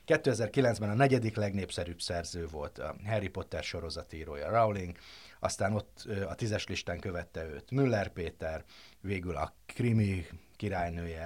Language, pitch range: Hungarian, 85-105 Hz